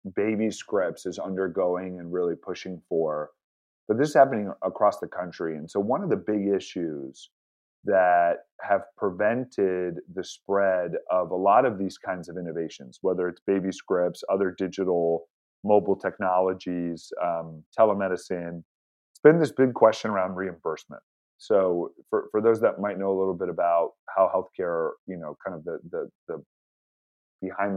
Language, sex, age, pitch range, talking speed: English, male, 30-49, 85-105 Hz, 160 wpm